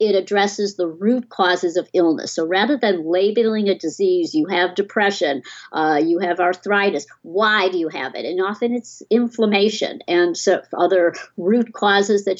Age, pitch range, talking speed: 60-79, 180-235 Hz, 165 wpm